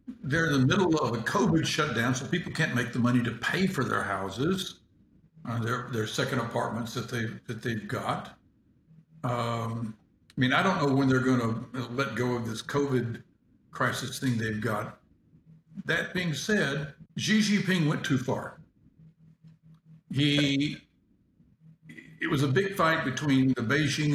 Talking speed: 160 wpm